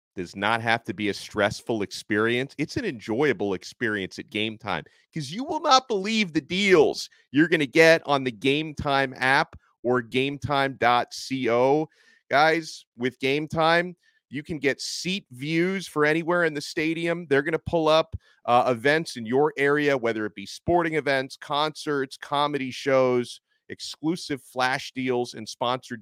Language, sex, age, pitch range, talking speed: English, male, 30-49, 125-160 Hz, 160 wpm